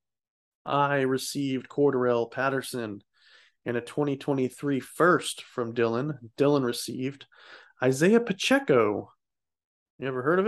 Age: 20-39